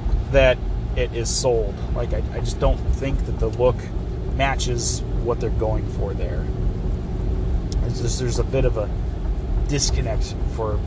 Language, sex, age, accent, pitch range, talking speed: English, male, 30-49, American, 75-105 Hz, 155 wpm